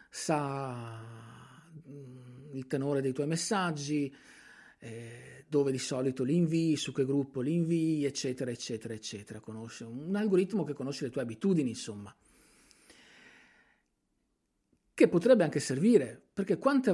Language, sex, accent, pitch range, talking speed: Italian, male, native, 125-165 Hz, 125 wpm